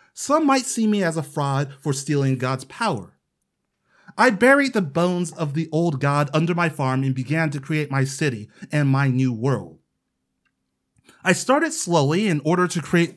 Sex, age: male, 30-49